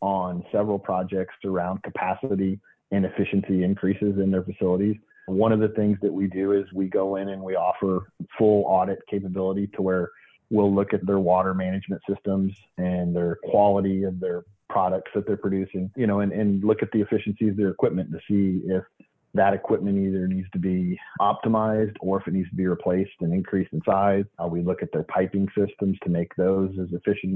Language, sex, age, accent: English, male, 30-49, American